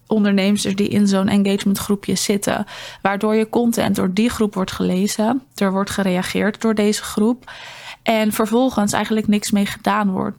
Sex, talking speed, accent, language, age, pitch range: female, 160 wpm, Dutch, Dutch, 20-39, 195-220 Hz